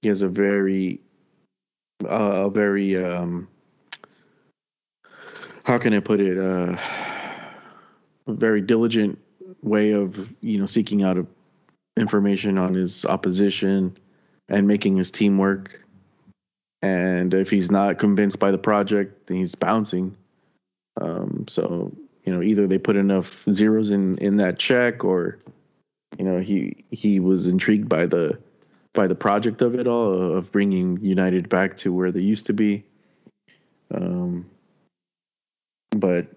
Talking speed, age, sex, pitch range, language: 140 wpm, 20-39, male, 95-105 Hz, English